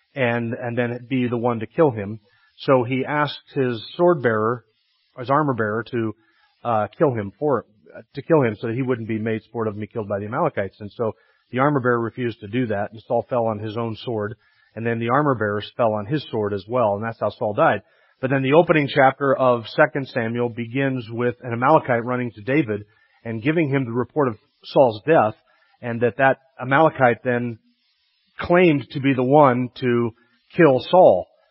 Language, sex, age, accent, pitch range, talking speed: English, male, 40-59, American, 115-135 Hz, 210 wpm